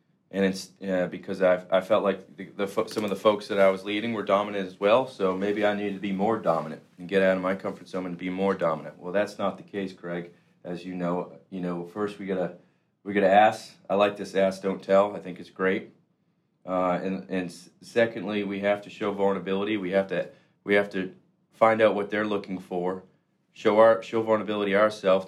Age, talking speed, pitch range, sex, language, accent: 40-59, 230 wpm, 90-105 Hz, male, English, American